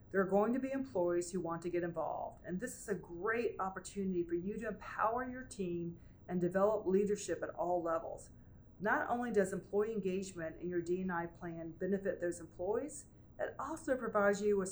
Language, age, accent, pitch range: English, 40-59, American, 170-230 Hz